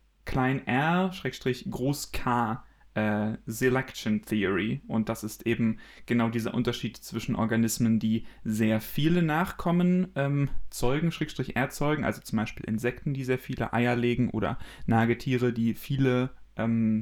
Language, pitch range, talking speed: German, 110-130 Hz, 115 wpm